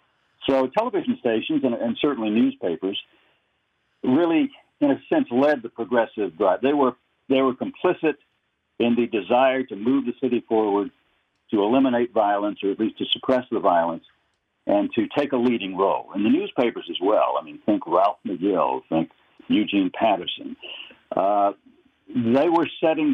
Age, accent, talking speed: 60-79, American, 160 wpm